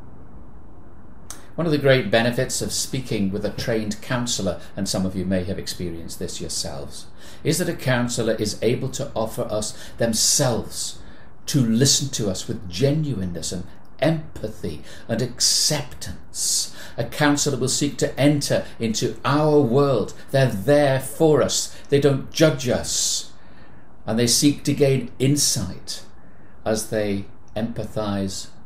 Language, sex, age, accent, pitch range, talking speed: English, male, 60-79, British, 100-140 Hz, 140 wpm